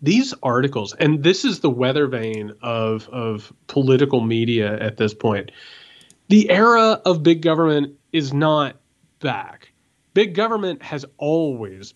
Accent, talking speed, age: American, 135 wpm, 30-49